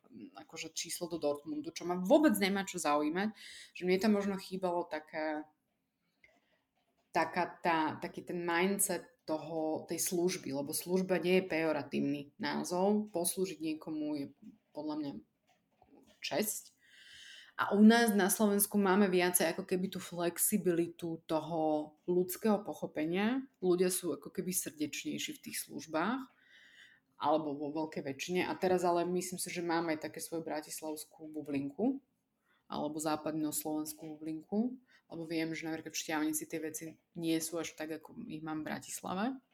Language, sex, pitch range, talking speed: English, female, 160-195 Hz, 140 wpm